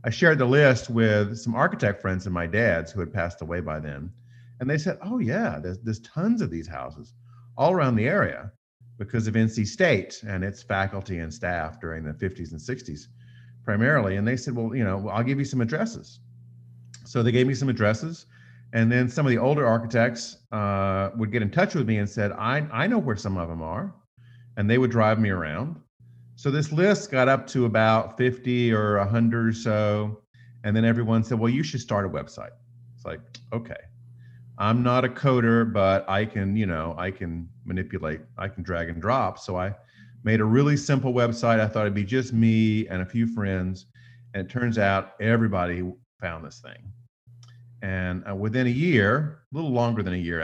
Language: English